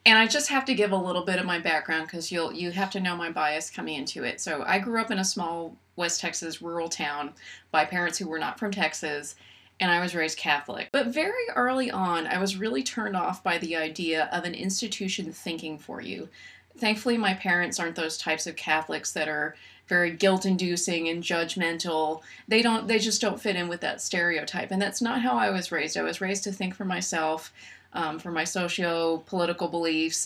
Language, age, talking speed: English, 30-49, 210 wpm